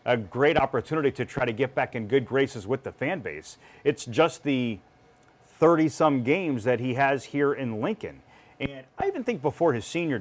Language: English